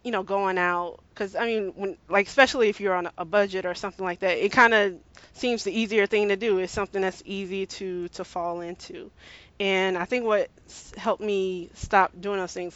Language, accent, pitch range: English, American, 180-205 Hz